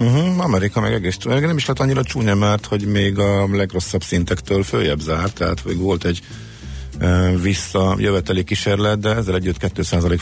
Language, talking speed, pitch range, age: Hungarian, 170 wpm, 80-100 Hz, 50-69